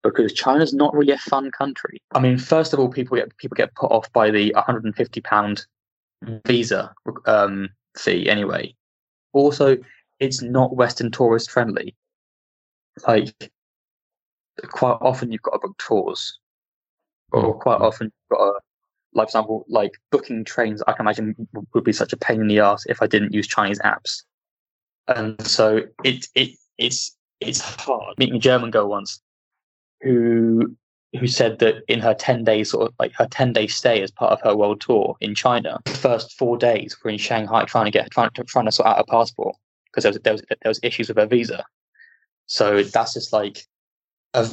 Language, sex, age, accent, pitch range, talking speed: English, male, 10-29, British, 110-130 Hz, 180 wpm